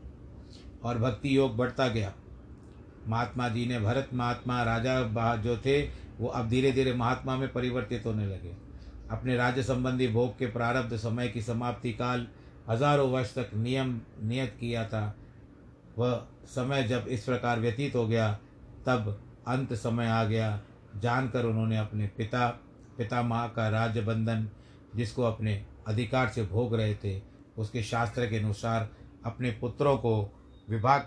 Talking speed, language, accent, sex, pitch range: 145 wpm, Hindi, native, male, 110-130 Hz